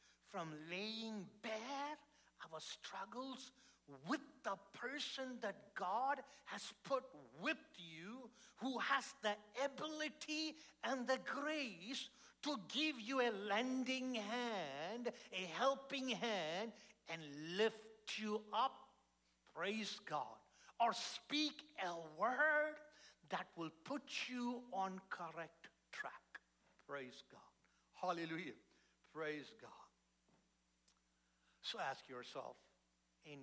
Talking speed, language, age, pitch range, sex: 100 wpm, English, 60-79, 150-235 Hz, male